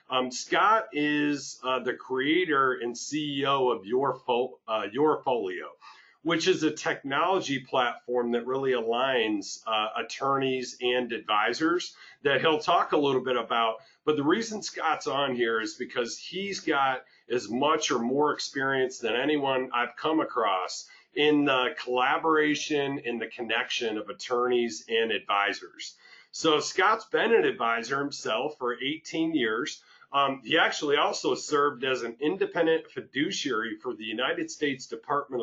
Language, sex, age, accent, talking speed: English, male, 40-59, American, 145 wpm